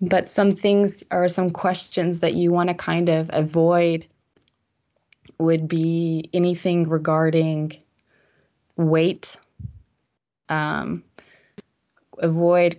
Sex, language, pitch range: female, Japanese, 165-205 Hz